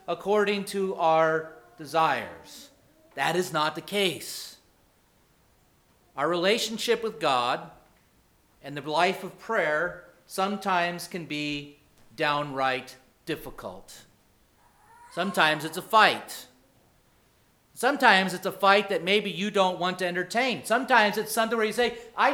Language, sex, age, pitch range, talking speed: English, male, 40-59, 175-225 Hz, 120 wpm